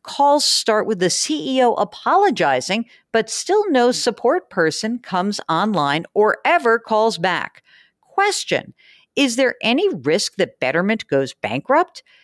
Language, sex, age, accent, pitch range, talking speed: English, female, 50-69, American, 155-260 Hz, 125 wpm